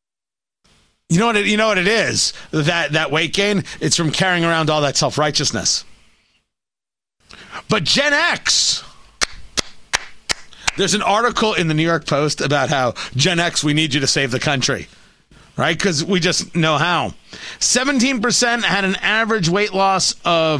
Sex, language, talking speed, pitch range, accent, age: male, English, 160 wpm, 150-210 Hz, American, 40-59